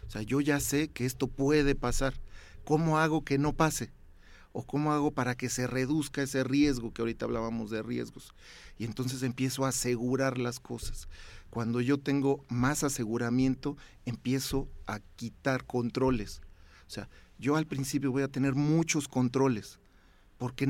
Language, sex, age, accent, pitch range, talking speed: Spanish, male, 40-59, Mexican, 110-140 Hz, 160 wpm